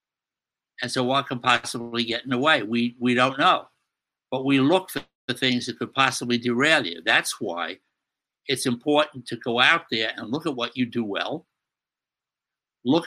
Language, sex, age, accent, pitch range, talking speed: English, male, 60-79, American, 120-145 Hz, 185 wpm